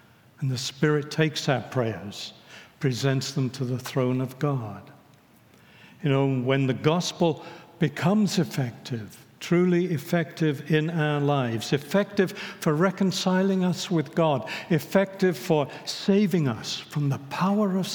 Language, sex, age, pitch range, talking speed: English, male, 60-79, 130-155 Hz, 130 wpm